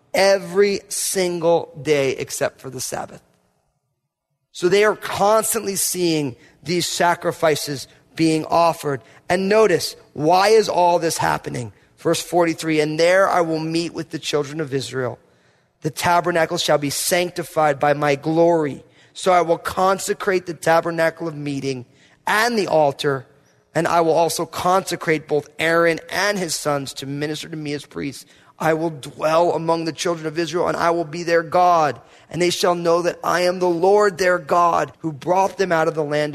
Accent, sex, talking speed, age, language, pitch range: American, male, 170 wpm, 30-49, English, 140-175 Hz